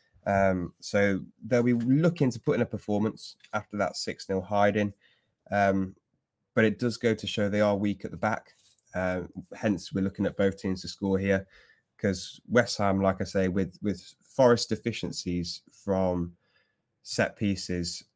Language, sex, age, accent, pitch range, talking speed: English, male, 20-39, British, 95-105 Hz, 165 wpm